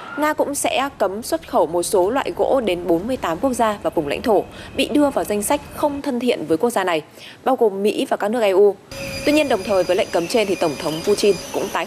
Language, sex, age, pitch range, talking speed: Vietnamese, female, 20-39, 170-245 Hz, 260 wpm